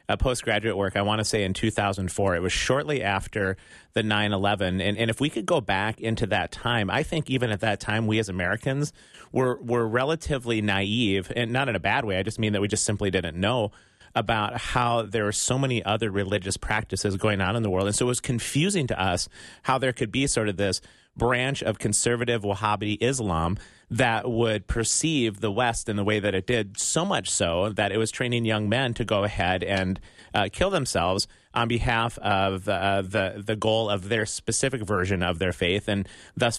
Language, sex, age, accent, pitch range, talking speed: English, male, 30-49, American, 100-120 Hz, 215 wpm